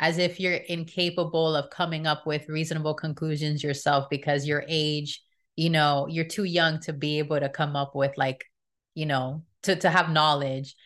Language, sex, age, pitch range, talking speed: English, female, 20-39, 150-175 Hz, 180 wpm